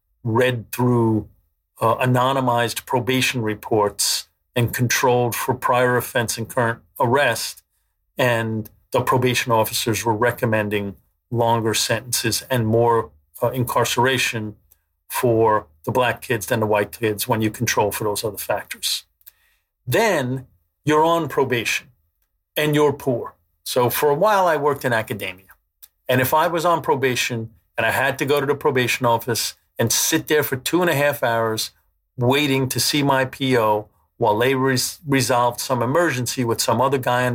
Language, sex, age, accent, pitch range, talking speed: English, male, 50-69, American, 105-135 Hz, 155 wpm